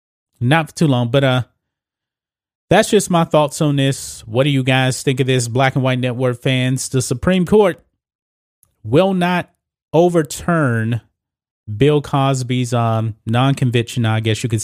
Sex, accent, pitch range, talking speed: male, American, 115-150 Hz, 155 wpm